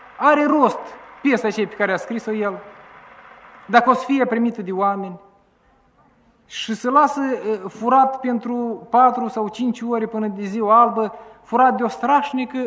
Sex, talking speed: male, 155 wpm